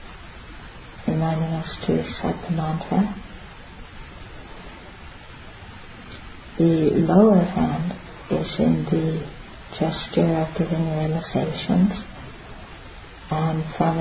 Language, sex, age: English, male, 40-59